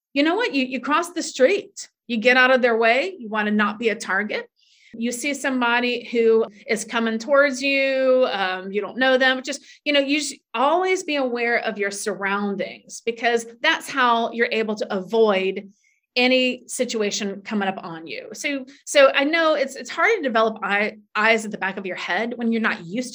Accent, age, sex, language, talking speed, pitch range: American, 30-49, female, English, 200 wpm, 210-280 Hz